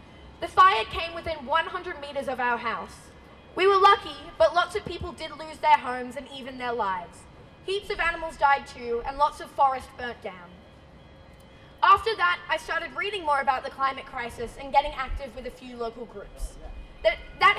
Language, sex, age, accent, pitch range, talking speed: English, female, 10-29, Australian, 255-340 Hz, 190 wpm